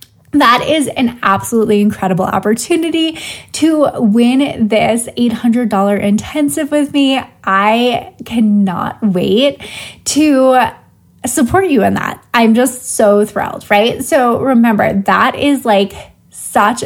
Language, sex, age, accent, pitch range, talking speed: English, female, 20-39, American, 205-270 Hz, 115 wpm